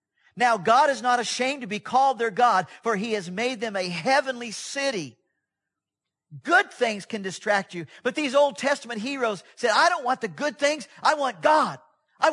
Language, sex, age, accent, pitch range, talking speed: English, male, 50-69, American, 210-275 Hz, 190 wpm